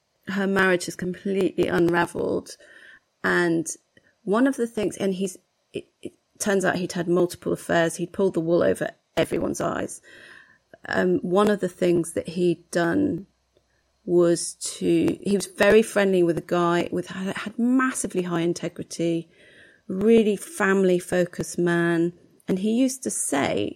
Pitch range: 175-215 Hz